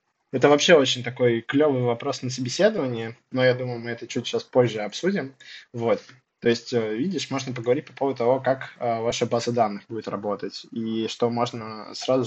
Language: Russian